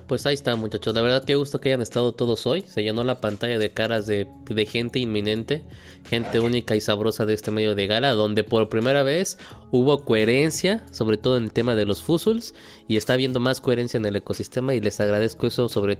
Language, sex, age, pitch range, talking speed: Spanish, male, 20-39, 105-130 Hz, 220 wpm